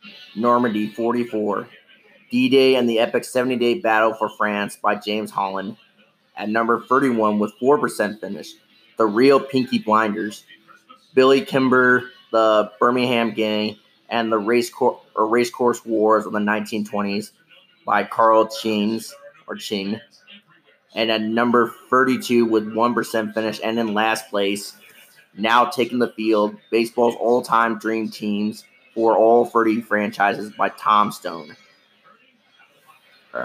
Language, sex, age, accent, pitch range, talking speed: English, male, 30-49, American, 110-130 Hz, 115 wpm